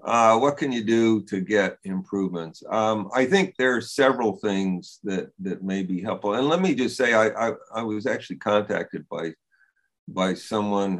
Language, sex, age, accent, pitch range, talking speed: English, male, 50-69, American, 90-105 Hz, 185 wpm